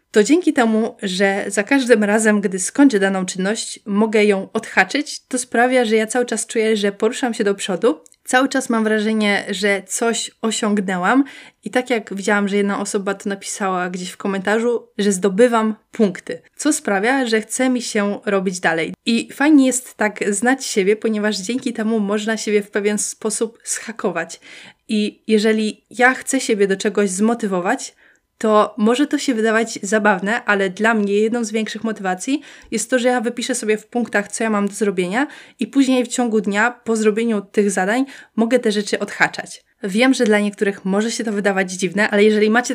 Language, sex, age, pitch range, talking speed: Polish, female, 20-39, 205-235 Hz, 180 wpm